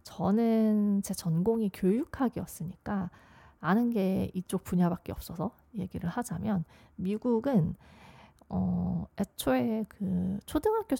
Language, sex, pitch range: Korean, female, 175-215 Hz